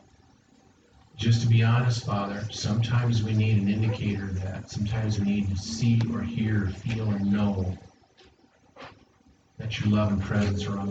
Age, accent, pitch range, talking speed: 40-59, American, 100-115 Hz, 165 wpm